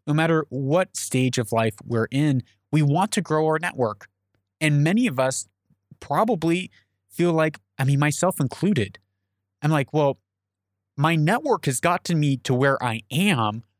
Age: 20-39